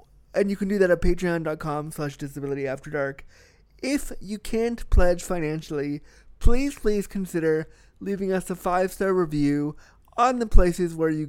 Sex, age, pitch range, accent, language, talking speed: male, 30-49, 140-190 Hz, American, English, 145 wpm